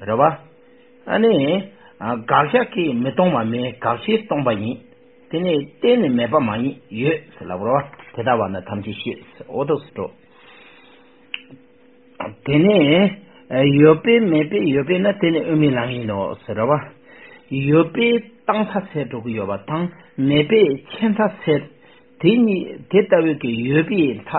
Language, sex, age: English, male, 60-79